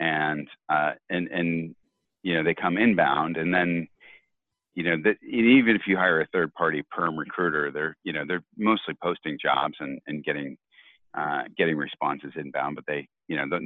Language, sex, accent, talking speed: English, male, American, 185 wpm